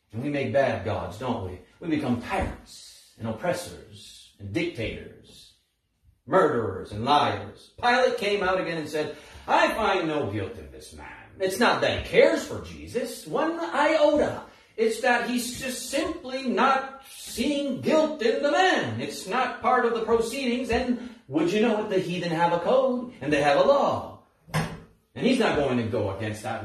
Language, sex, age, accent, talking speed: English, male, 40-59, American, 175 wpm